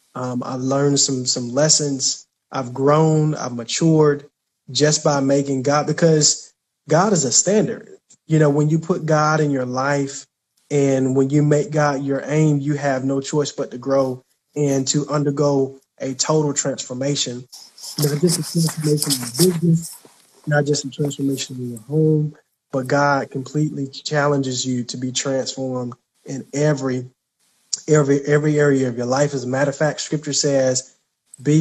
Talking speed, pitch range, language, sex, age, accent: 160 wpm, 135-155 Hz, English, male, 20-39, American